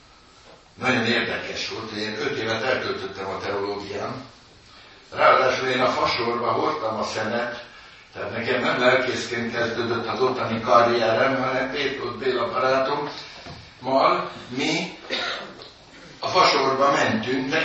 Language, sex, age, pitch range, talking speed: Hungarian, male, 60-79, 105-130 Hz, 110 wpm